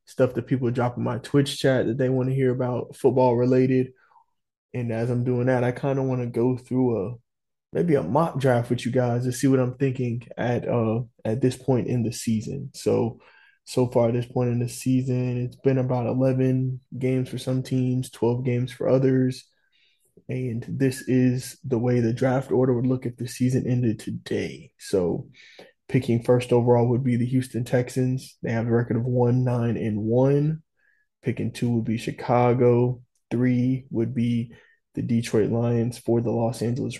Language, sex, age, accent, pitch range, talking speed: English, male, 20-39, American, 120-130 Hz, 190 wpm